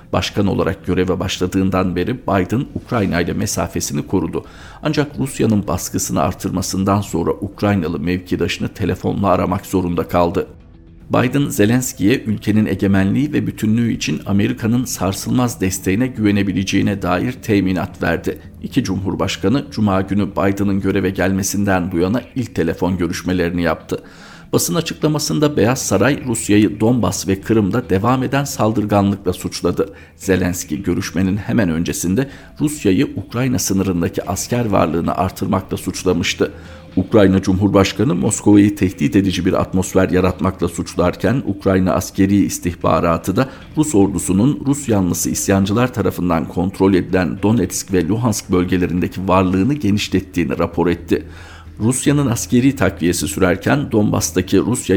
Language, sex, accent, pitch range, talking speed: Turkish, male, native, 90-105 Hz, 115 wpm